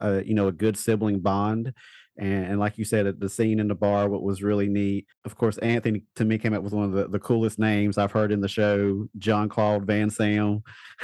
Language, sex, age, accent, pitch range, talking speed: English, male, 30-49, American, 100-115 Hz, 240 wpm